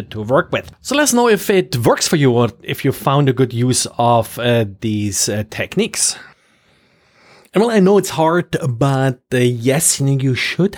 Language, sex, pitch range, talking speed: English, male, 125-165 Hz, 200 wpm